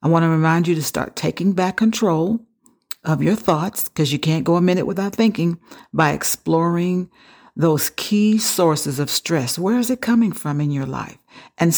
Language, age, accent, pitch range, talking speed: English, 50-69, American, 150-185 Hz, 190 wpm